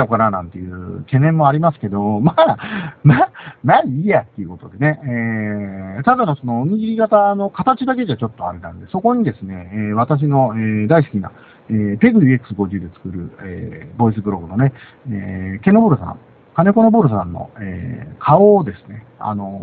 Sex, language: male, Japanese